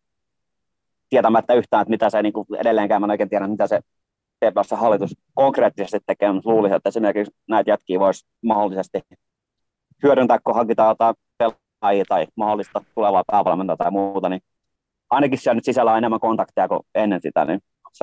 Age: 30-49